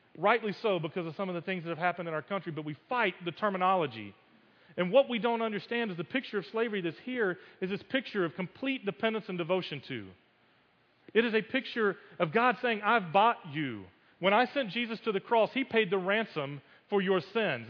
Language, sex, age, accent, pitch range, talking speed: English, male, 40-59, American, 180-235 Hz, 215 wpm